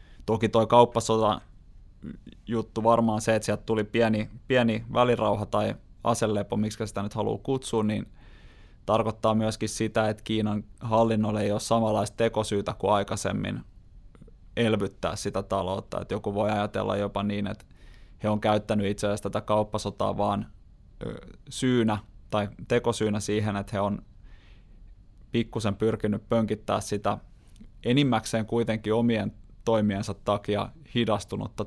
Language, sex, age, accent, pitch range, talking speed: Finnish, male, 20-39, native, 100-115 Hz, 125 wpm